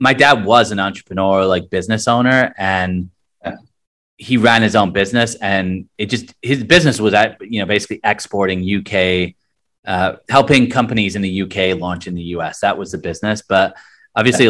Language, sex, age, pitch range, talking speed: English, male, 30-49, 95-115 Hz, 175 wpm